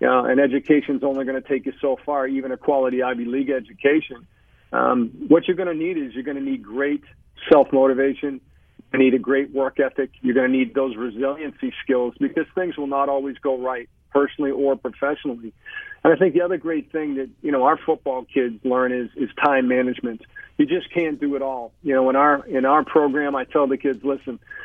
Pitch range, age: 130-155 Hz, 40-59